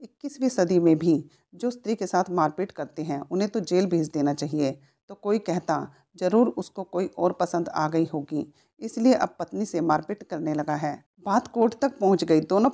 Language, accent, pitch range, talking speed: Hindi, native, 155-205 Hz, 200 wpm